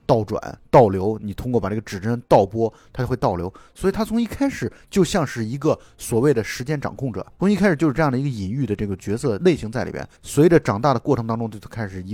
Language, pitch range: Chinese, 105-145 Hz